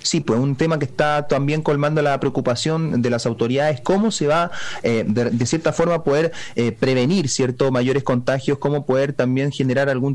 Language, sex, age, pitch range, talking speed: Spanish, male, 30-49, 125-150 Hz, 190 wpm